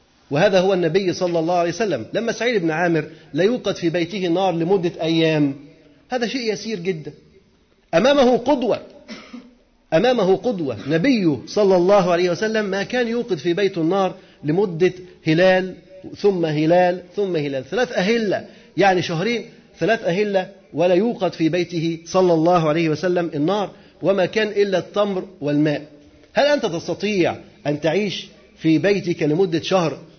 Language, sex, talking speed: Arabic, male, 145 wpm